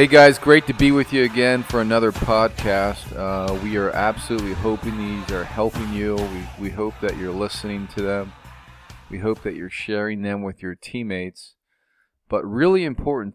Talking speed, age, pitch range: 180 wpm, 40-59, 95-110 Hz